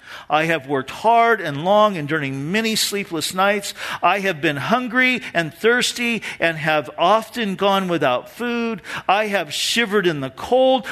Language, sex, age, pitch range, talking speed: English, male, 50-69, 125-200 Hz, 160 wpm